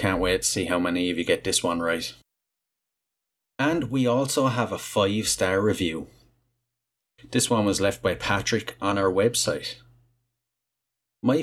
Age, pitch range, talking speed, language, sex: 30-49, 95-120 Hz, 160 wpm, English, male